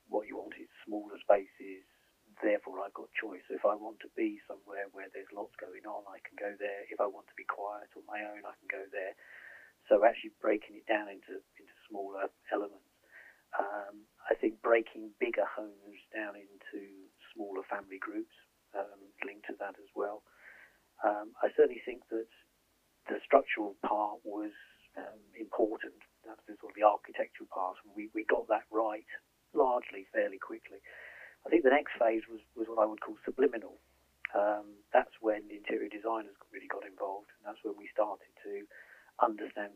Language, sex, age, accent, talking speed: English, male, 40-59, British, 180 wpm